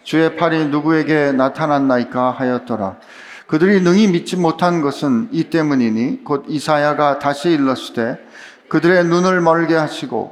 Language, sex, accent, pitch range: Korean, male, native, 140-175 Hz